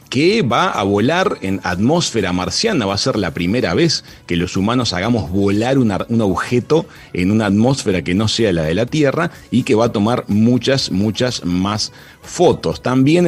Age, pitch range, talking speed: 40-59, 100-130 Hz, 185 wpm